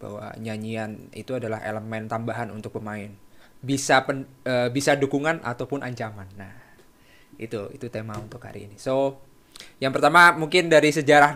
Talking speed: 150 wpm